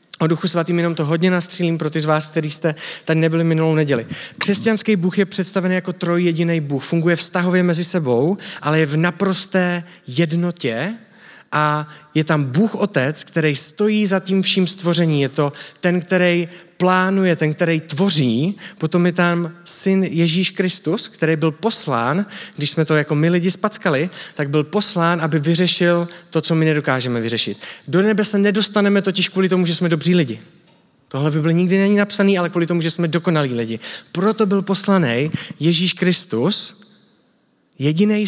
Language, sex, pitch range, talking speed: Czech, male, 150-190 Hz, 170 wpm